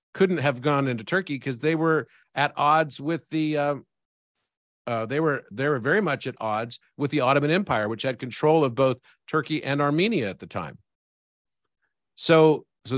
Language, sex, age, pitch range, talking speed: English, male, 50-69, 120-155 Hz, 180 wpm